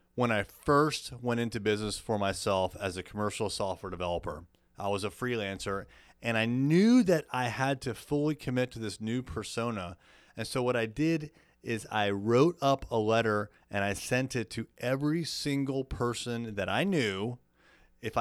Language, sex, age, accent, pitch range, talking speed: English, male, 30-49, American, 100-135 Hz, 175 wpm